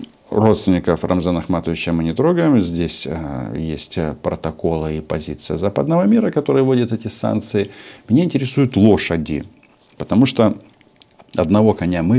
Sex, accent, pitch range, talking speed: male, native, 85-120 Hz, 125 wpm